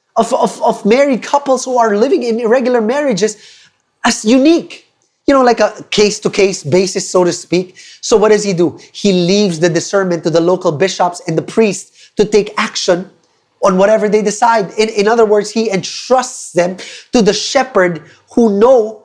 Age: 30-49